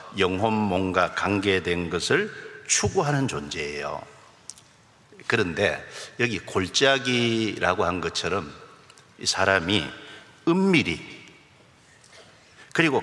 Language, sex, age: Korean, male, 50-69